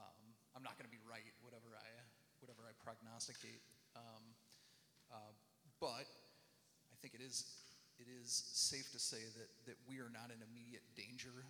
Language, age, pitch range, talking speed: English, 30-49, 115-125 Hz, 160 wpm